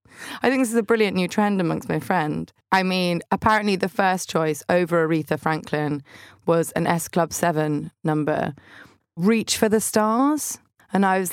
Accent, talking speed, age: British, 175 wpm, 20-39